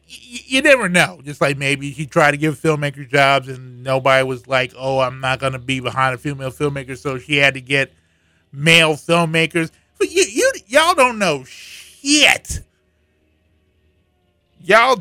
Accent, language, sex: American, English, male